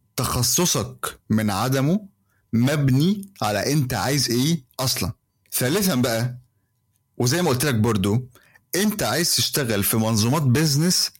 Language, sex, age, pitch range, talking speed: Arabic, male, 30-49, 110-145 Hz, 115 wpm